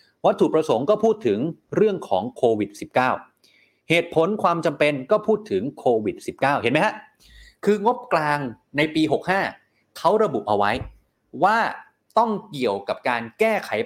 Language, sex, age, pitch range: Thai, male, 30-49, 125-205 Hz